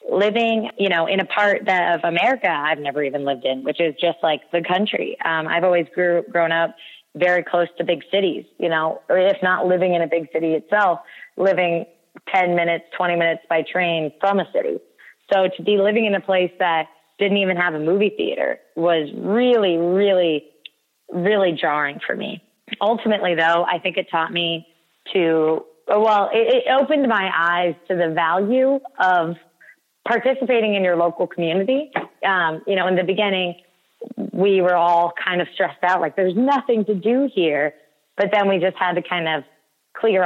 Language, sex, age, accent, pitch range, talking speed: English, female, 20-39, American, 165-200 Hz, 185 wpm